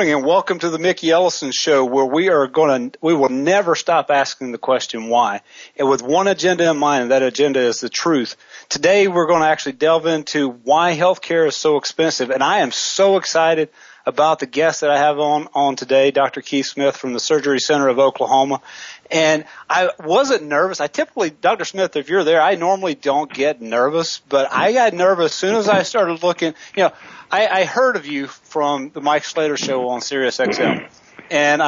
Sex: male